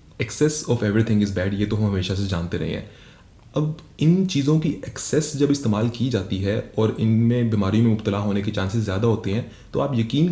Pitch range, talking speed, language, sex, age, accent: 105-125 Hz, 215 wpm, English, male, 30-49, Indian